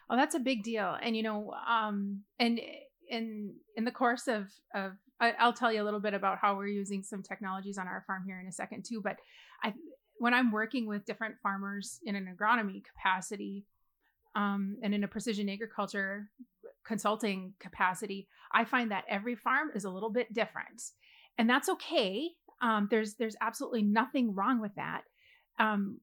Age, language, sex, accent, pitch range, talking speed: 30-49, English, female, American, 195-230 Hz, 180 wpm